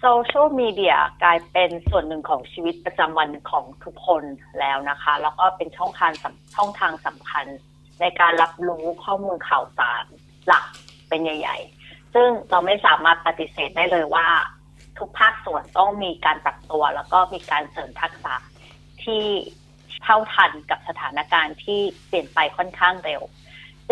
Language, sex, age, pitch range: Thai, female, 30-49, 160-205 Hz